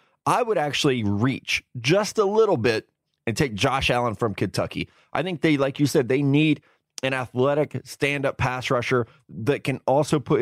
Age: 30-49